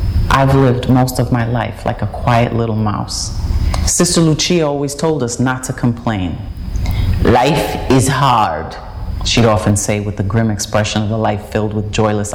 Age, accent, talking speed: 30-49, American, 170 wpm